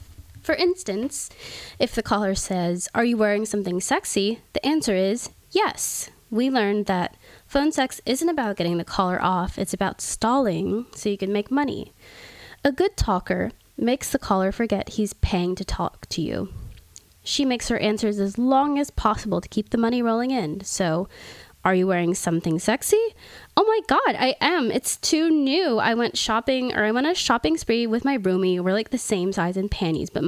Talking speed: 190 wpm